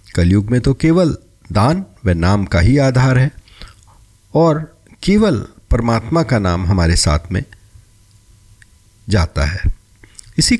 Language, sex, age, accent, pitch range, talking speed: Hindi, male, 50-69, native, 95-130 Hz, 125 wpm